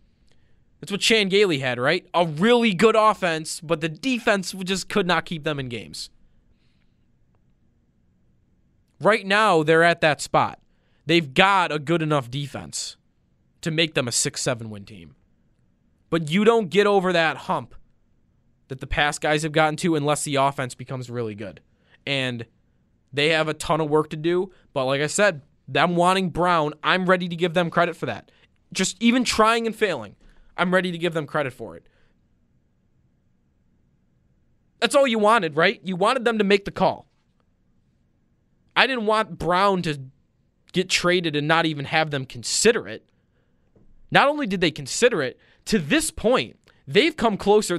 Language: English